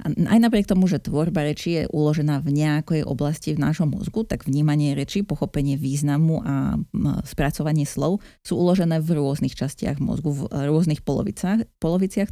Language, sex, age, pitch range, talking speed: Slovak, female, 30-49, 150-180 Hz, 150 wpm